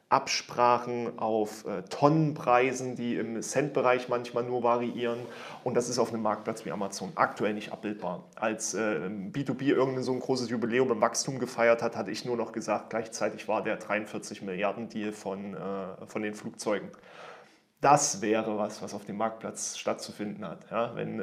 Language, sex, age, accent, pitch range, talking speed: German, male, 30-49, German, 115-140 Hz, 165 wpm